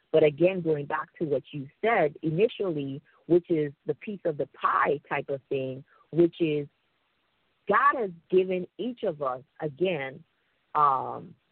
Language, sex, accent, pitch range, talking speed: English, female, American, 150-210 Hz, 150 wpm